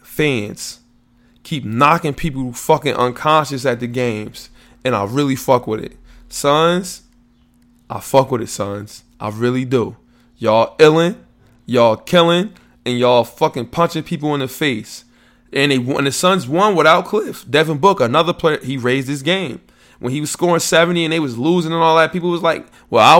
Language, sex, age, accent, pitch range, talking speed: English, male, 20-39, American, 120-165 Hz, 180 wpm